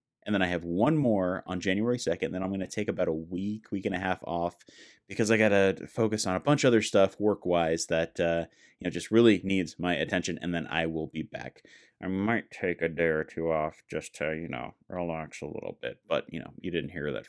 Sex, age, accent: male, 30-49, American